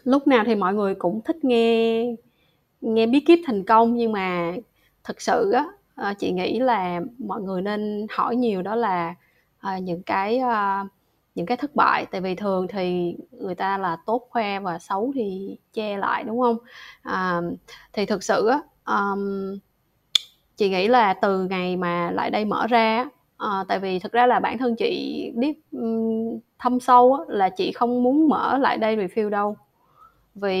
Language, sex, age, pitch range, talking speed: Vietnamese, female, 20-39, 195-245 Hz, 160 wpm